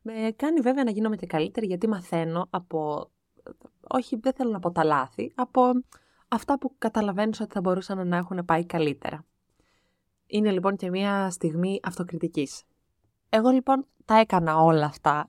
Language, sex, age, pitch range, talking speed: Greek, female, 20-39, 160-220 Hz, 155 wpm